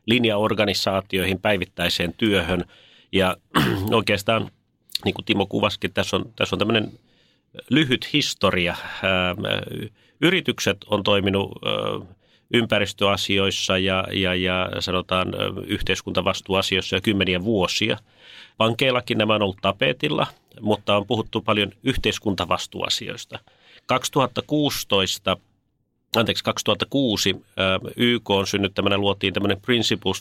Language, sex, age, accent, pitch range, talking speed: Finnish, male, 30-49, native, 95-115 Hz, 95 wpm